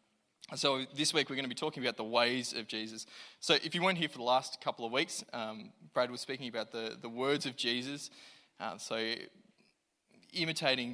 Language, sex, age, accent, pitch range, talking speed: English, male, 20-39, Australian, 115-135 Hz, 205 wpm